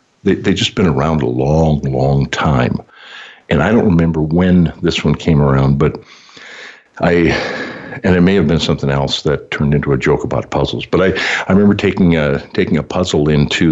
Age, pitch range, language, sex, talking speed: 60-79, 75-95 Hz, English, male, 195 wpm